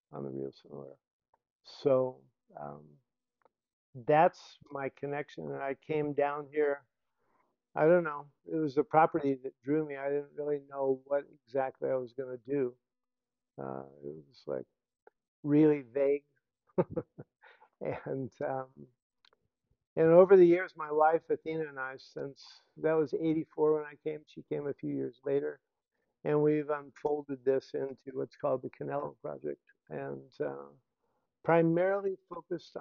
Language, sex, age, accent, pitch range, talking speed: English, male, 50-69, American, 130-155 Hz, 150 wpm